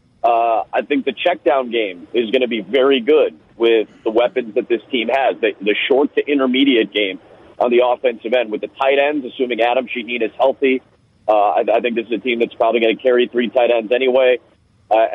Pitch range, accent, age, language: 115-140 Hz, American, 30-49, English